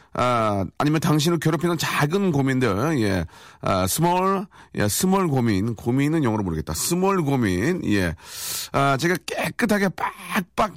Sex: male